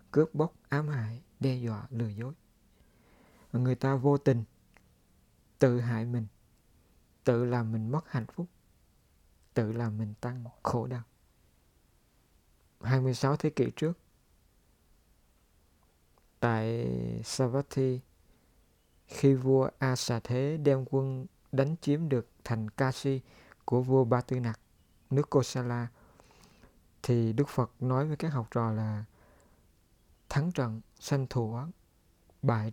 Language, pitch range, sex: Vietnamese, 110-135 Hz, male